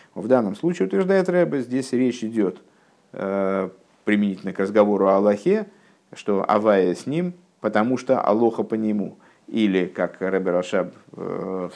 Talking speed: 145 wpm